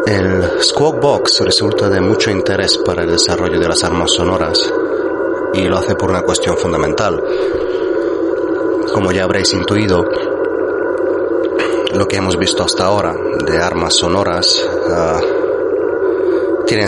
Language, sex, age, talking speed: Spanish, male, 30-49, 130 wpm